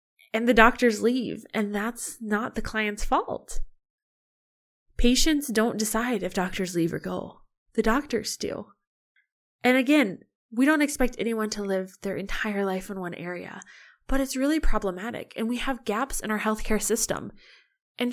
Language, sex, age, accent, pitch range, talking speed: English, female, 20-39, American, 175-235 Hz, 160 wpm